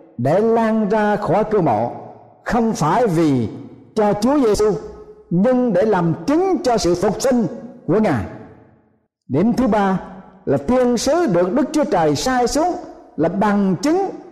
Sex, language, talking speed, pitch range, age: male, Vietnamese, 155 wpm, 165-245 Hz, 60-79